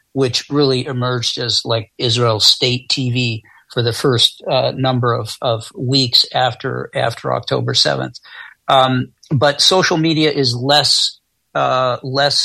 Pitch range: 125-140 Hz